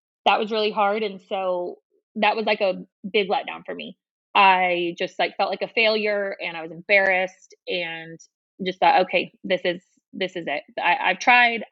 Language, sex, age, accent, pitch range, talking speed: English, female, 20-39, American, 185-220 Hz, 185 wpm